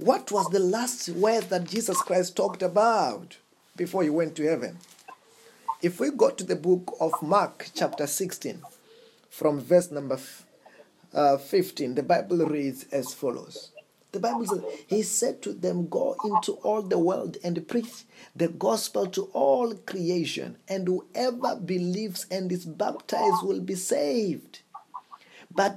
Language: English